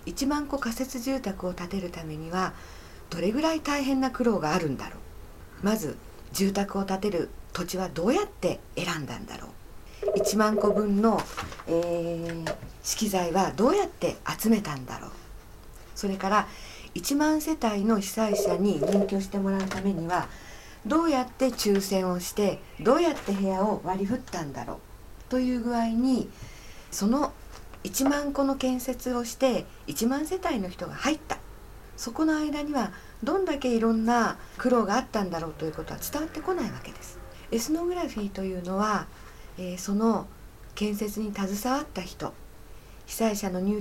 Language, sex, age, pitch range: Japanese, female, 50-69, 185-255 Hz